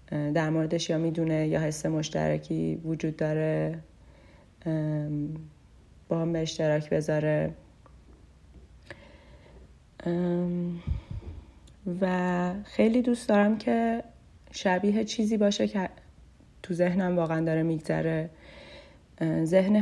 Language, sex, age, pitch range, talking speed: Persian, female, 30-49, 145-175 Hz, 85 wpm